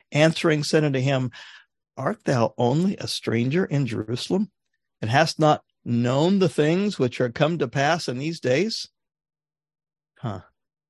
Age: 50-69